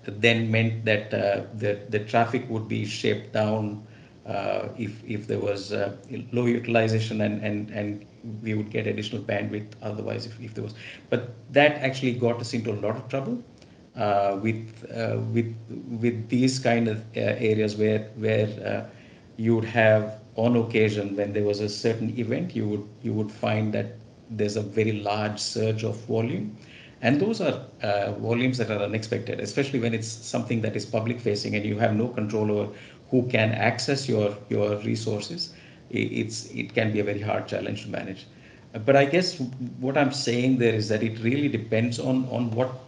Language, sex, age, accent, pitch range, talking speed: English, male, 50-69, Indian, 105-120 Hz, 185 wpm